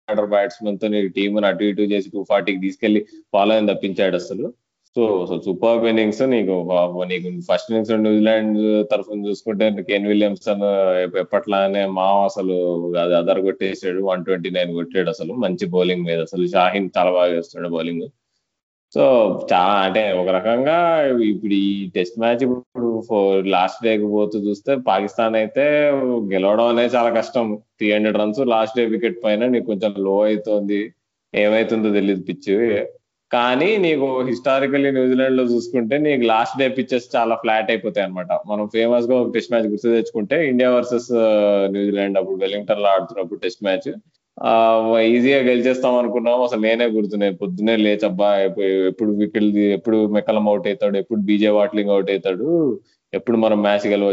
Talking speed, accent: 140 wpm, native